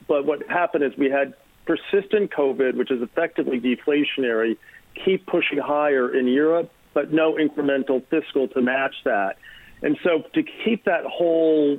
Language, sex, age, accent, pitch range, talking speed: English, male, 50-69, American, 125-150 Hz, 155 wpm